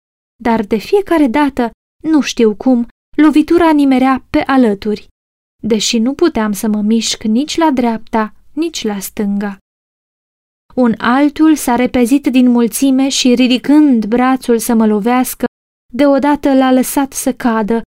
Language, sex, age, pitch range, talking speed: Romanian, female, 20-39, 230-280 Hz, 135 wpm